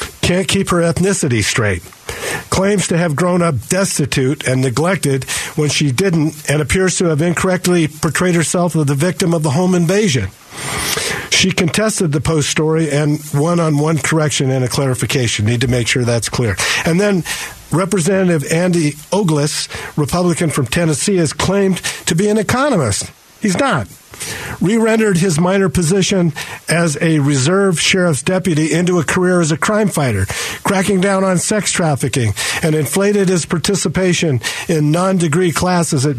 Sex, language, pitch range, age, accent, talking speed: male, English, 150-185 Hz, 50-69, American, 155 wpm